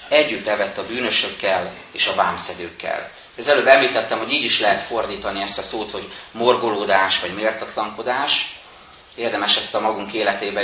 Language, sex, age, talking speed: Hungarian, male, 30-49, 150 wpm